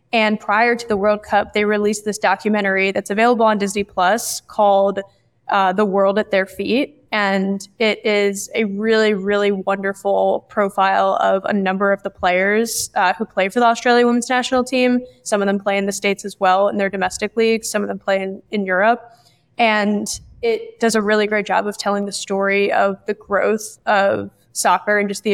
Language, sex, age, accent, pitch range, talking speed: English, female, 10-29, American, 195-215 Hz, 200 wpm